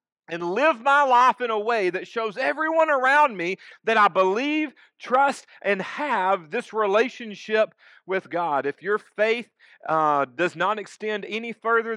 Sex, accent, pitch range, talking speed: male, American, 155-225 Hz, 155 wpm